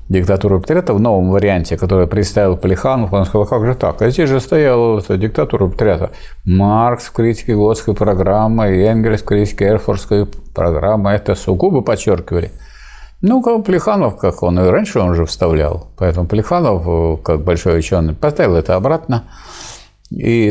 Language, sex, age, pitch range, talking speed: Russian, male, 50-69, 85-115 Hz, 145 wpm